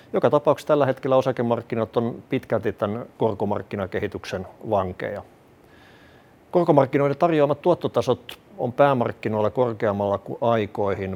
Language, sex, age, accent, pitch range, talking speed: Finnish, male, 50-69, native, 105-130 Hz, 95 wpm